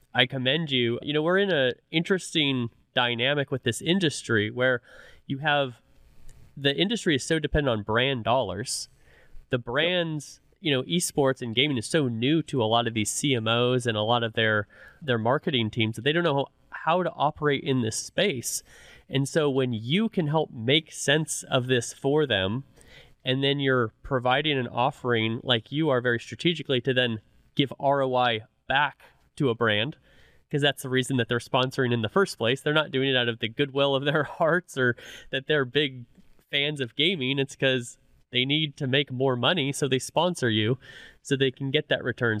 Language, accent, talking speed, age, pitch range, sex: English, American, 190 wpm, 20-39, 120-145 Hz, male